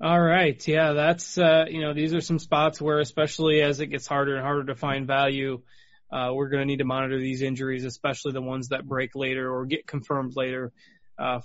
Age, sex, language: 20-39, male, English